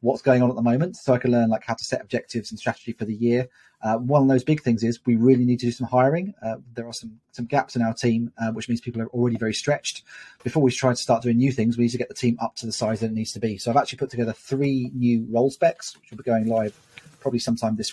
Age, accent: 30-49, British